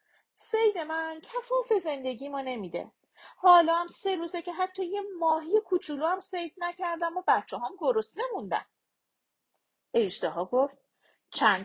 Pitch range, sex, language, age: 250-375 Hz, female, Persian, 40-59